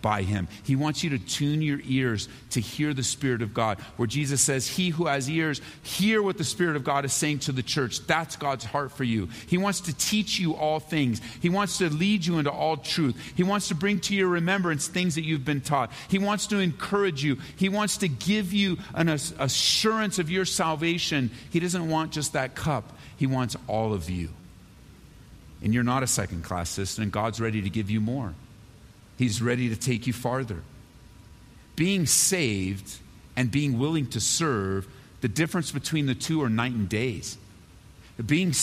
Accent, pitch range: American, 125-180 Hz